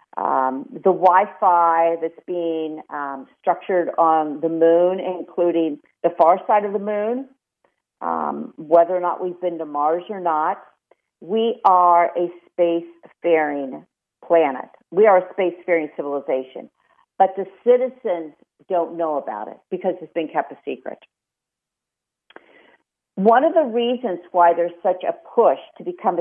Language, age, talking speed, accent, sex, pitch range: English, 50-69, 140 wpm, American, female, 165-210 Hz